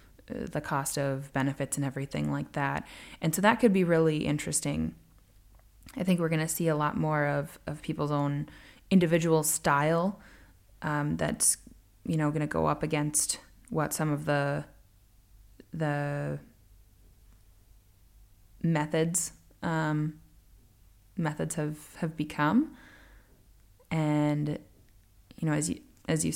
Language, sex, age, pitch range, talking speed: English, female, 20-39, 100-155 Hz, 130 wpm